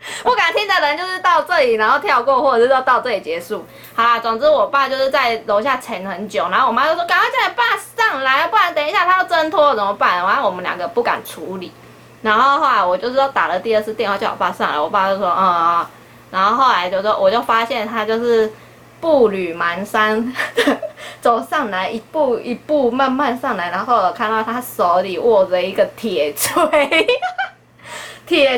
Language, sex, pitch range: Chinese, female, 205-290 Hz